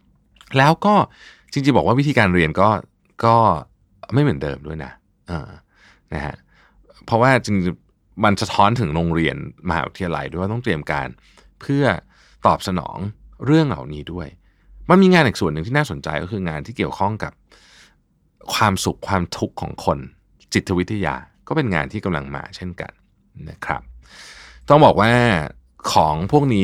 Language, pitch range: Thai, 85-120 Hz